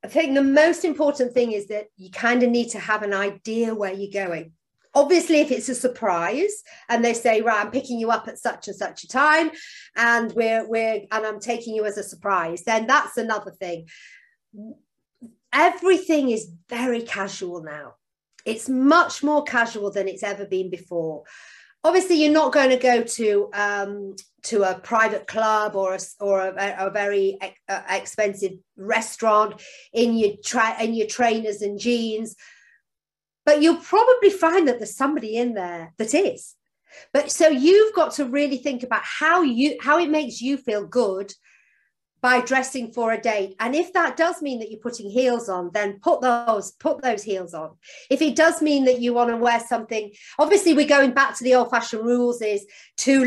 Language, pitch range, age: English, 205-275 Hz, 40-59